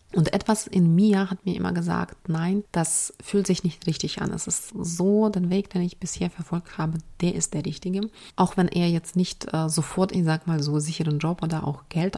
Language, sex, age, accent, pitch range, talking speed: German, female, 30-49, German, 160-185 Hz, 220 wpm